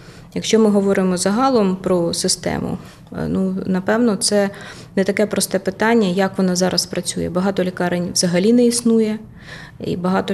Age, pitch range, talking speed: 20-39, 175-200 Hz, 140 wpm